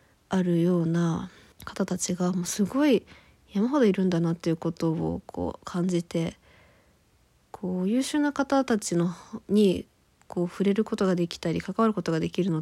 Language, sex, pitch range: Japanese, female, 165-200 Hz